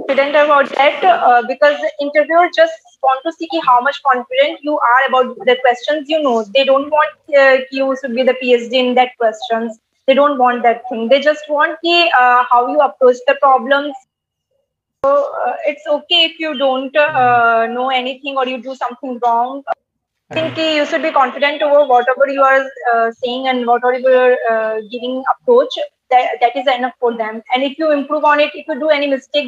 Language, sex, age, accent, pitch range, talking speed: Hindi, female, 20-39, native, 250-295 Hz, 210 wpm